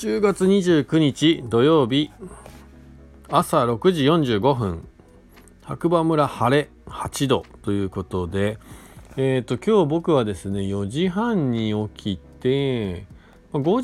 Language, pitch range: Japanese, 85-125 Hz